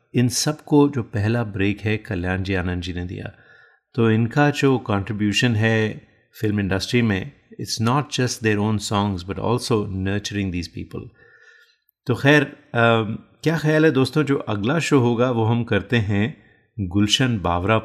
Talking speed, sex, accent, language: 160 wpm, male, native, Hindi